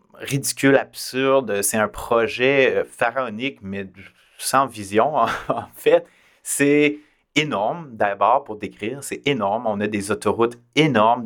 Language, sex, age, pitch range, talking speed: French, male, 30-49, 105-140 Hz, 125 wpm